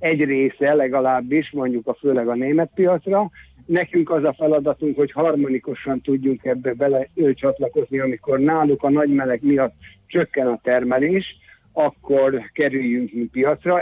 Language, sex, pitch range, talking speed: Hungarian, male, 125-155 Hz, 135 wpm